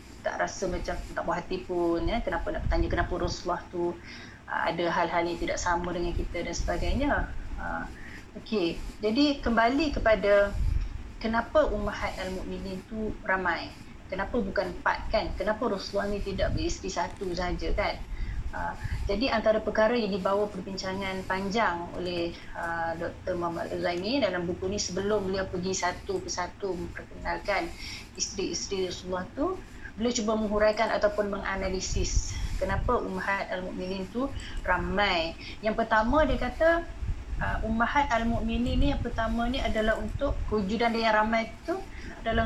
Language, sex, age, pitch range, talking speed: Malay, female, 30-49, 180-225 Hz, 140 wpm